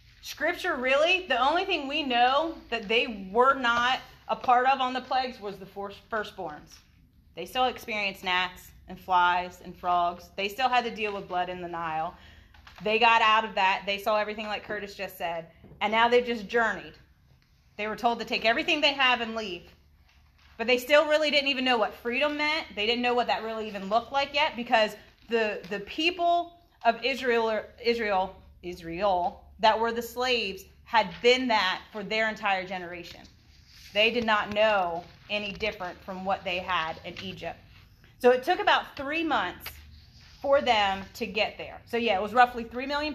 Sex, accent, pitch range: female, American, 180-245 Hz